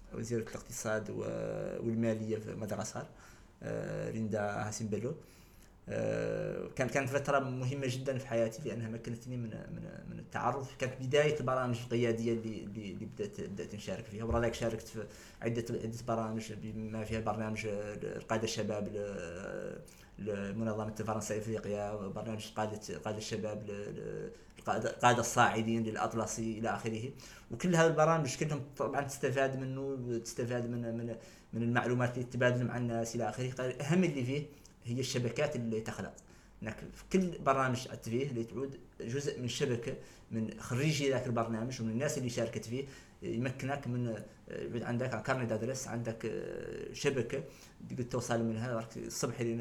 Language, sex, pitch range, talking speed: Arabic, male, 110-125 Hz, 125 wpm